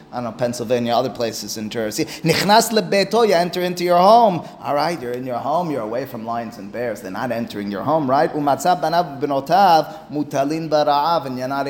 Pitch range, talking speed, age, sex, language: 125-155 Hz, 175 wpm, 30-49, male, English